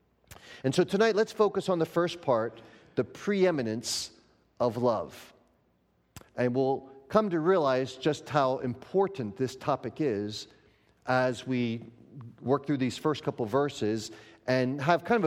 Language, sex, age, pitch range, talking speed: English, male, 40-59, 125-170 Hz, 140 wpm